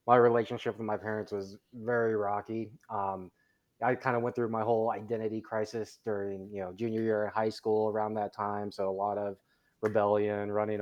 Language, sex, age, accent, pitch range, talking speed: English, male, 20-39, American, 105-120 Hz, 195 wpm